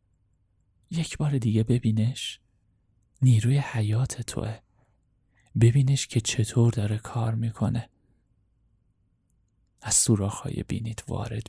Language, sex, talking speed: Persian, male, 90 wpm